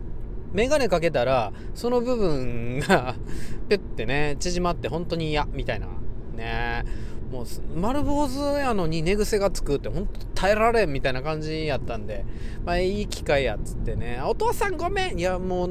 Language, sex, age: Japanese, male, 20-39